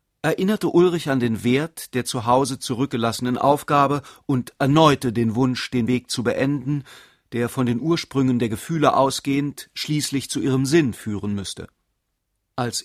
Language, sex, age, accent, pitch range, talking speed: German, male, 40-59, German, 120-145 Hz, 150 wpm